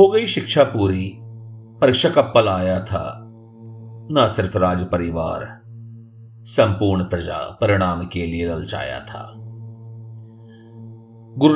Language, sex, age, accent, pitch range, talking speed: Hindi, male, 40-59, native, 100-130 Hz, 105 wpm